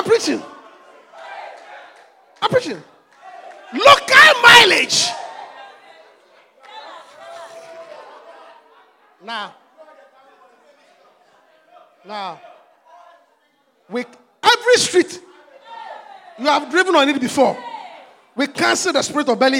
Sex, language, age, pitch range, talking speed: male, English, 40-59, 280-435 Hz, 75 wpm